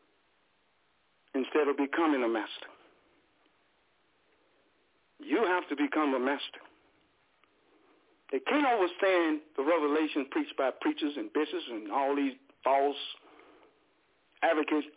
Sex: male